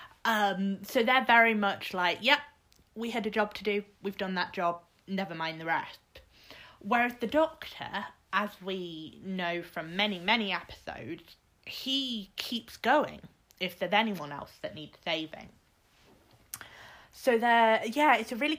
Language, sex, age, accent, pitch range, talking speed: English, female, 20-39, British, 180-245 Hz, 150 wpm